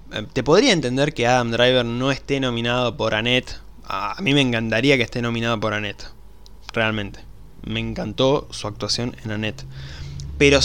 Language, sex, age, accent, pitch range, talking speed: Spanish, male, 20-39, Argentinian, 110-125 Hz, 160 wpm